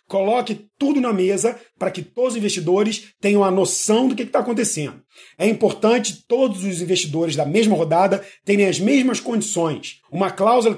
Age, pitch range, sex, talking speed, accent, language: 40-59, 185-225 Hz, male, 165 wpm, Brazilian, Portuguese